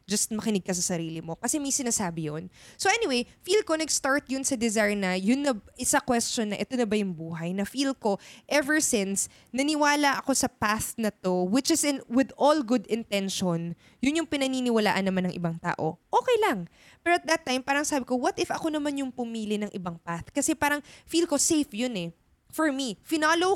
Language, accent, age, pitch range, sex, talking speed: Filipino, native, 20-39, 195-285 Hz, female, 210 wpm